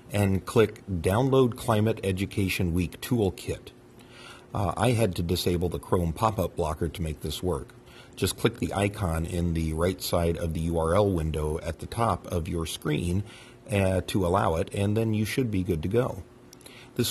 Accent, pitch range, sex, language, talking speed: American, 85-115 Hz, male, English, 180 wpm